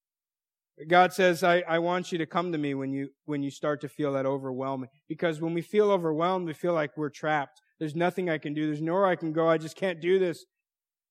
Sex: male